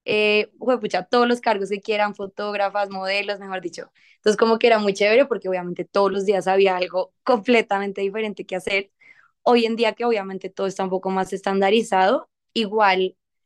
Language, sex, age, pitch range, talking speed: English, female, 20-39, 190-220 Hz, 180 wpm